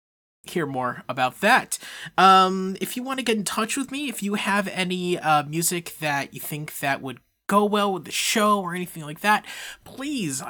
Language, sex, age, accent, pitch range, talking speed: English, male, 20-39, American, 150-205 Hz, 200 wpm